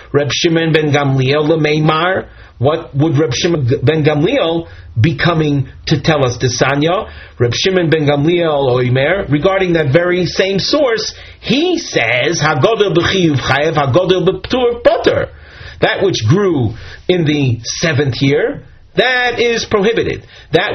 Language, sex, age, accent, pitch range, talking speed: English, male, 40-59, American, 130-180 Hz, 130 wpm